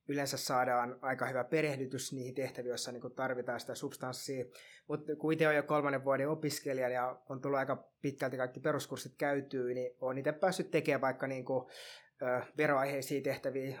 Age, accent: 20-39, native